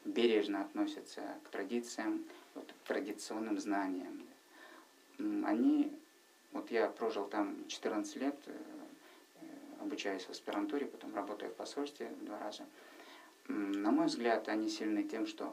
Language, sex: Russian, male